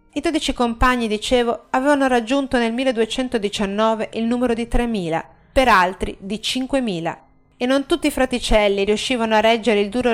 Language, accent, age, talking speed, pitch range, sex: Italian, native, 30-49, 155 wpm, 205-260 Hz, female